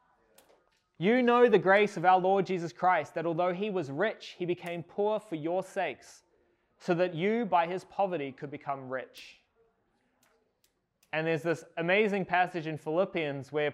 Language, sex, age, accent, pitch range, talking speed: English, male, 20-39, Australian, 165-200 Hz, 160 wpm